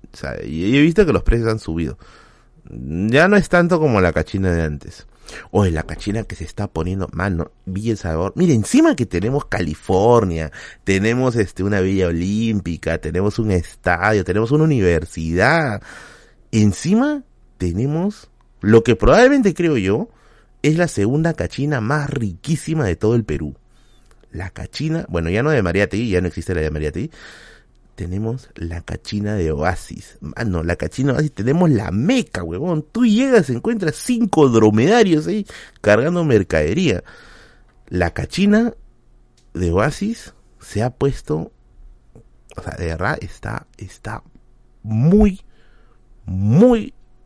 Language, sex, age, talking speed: Spanish, male, 30-49, 145 wpm